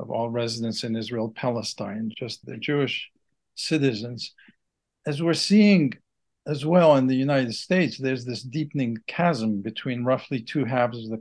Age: 50-69